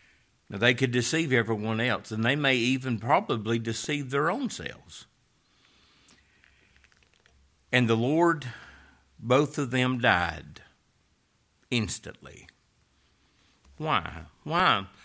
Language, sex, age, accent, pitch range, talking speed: English, male, 60-79, American, 115-165 Hz, 100 wpm